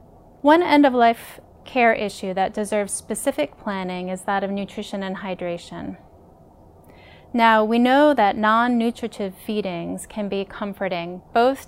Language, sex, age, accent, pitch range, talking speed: English, female, 30-49, American, 185-225 Hz, 135 wpm